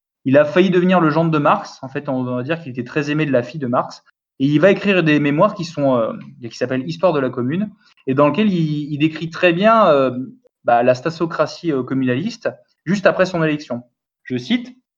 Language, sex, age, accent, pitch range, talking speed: French, male, 20-39, French, 140-185 Hz, 225 wpm